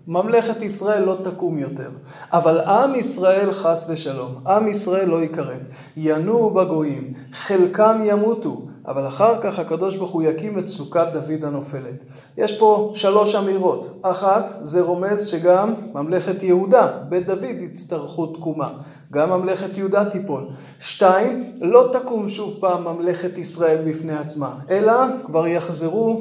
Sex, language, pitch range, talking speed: male, Hebrew, 160-210 Hz, 135 wpm